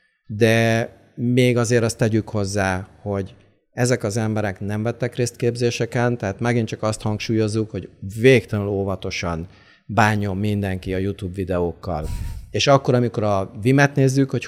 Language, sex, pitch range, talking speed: Hungarian, male, 105-125 Hz, 140 wpm